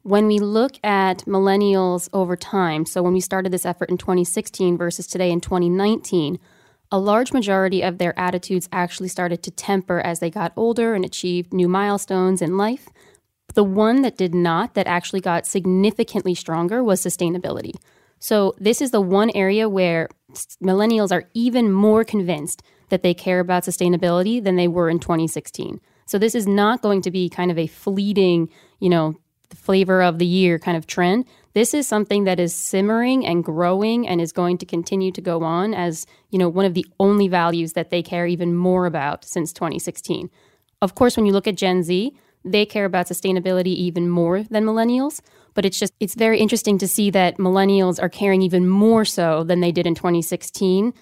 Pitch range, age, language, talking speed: 175-205 Hz, 20-39, English, 190 wpm